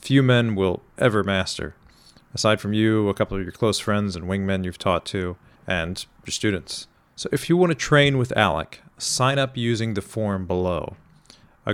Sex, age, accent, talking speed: male, 40-59, American, 190 wpm